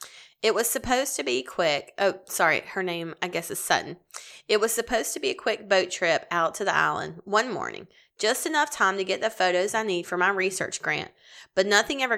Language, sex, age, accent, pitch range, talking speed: English, female, 30-49, American, 180-220 Hz, 220 wpm